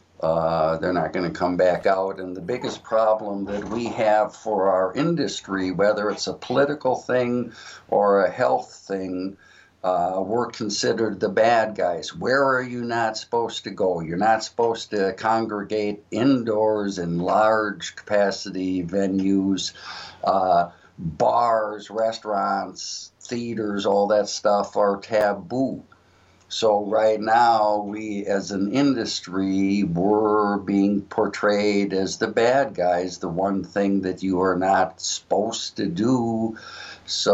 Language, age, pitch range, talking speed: English, 60-79, 95-110 Hz, 135 wpm